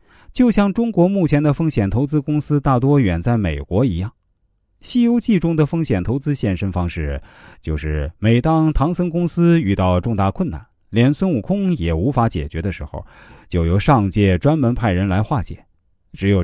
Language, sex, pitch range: Chinese, male, 90-150 Hz